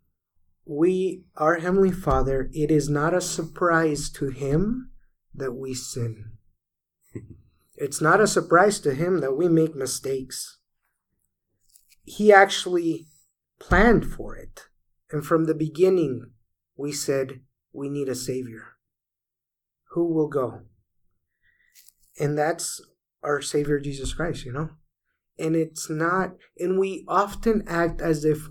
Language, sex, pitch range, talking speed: English, male, 140-175 Hz, 125 wpm